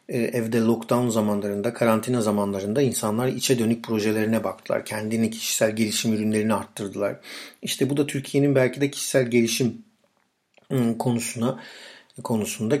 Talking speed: 115 wpm